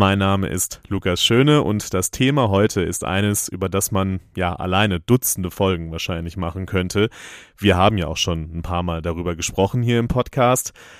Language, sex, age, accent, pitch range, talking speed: German, male, 30-49, German, 90-115 Hz, 185 wpm